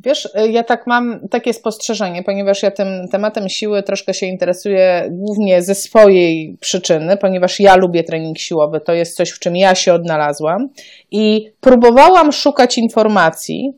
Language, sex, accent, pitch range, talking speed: Polish, female, native, 185-235 Hz, 155 wpm